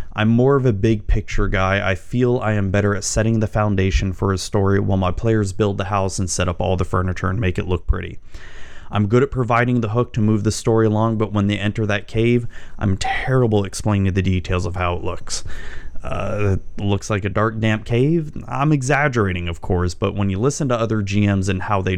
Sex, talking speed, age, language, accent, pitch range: male, 225 wpm, 30-49, English, American, 95-110 Hz